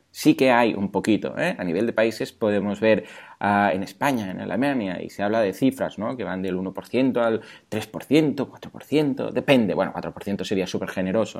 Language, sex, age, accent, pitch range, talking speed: Spanish, male, 20-39, Spanish, 100-135 Hz, 190 wpm